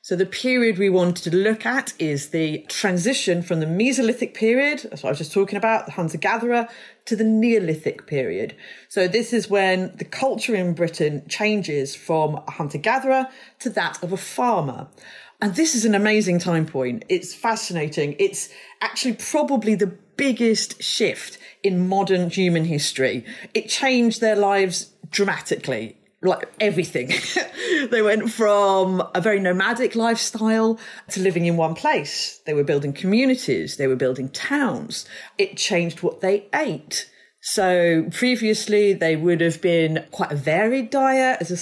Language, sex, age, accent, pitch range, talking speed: English, female, 40-59, British, 170-230 Hz, 160 wpm